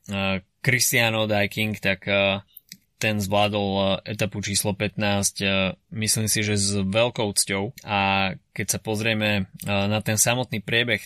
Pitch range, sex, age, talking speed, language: 95-105 Hz, male, 20-39, 120 wpm, Slovak